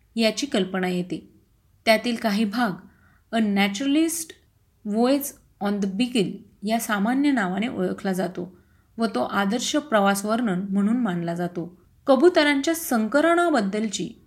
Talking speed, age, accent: 120 wpm, 30-49, native